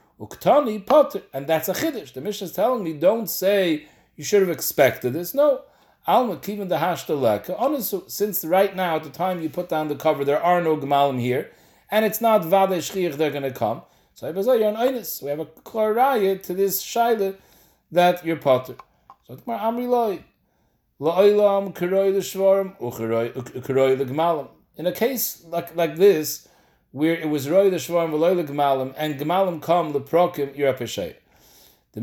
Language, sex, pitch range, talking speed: English, male, 145-205 Hz, 135 wpm